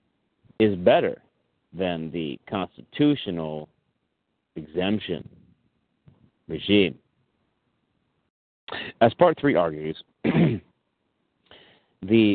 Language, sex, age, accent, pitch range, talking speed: English, male, 40-59, American, 95-125 Hz, 60 wpm